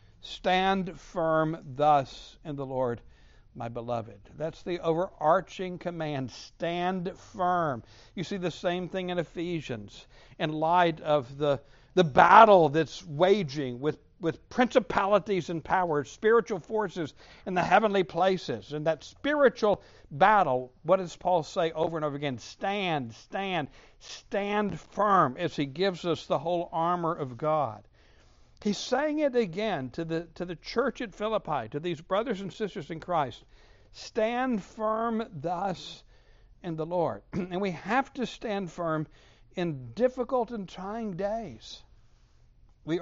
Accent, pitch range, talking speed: American, 150-195 Hz, 140 wpm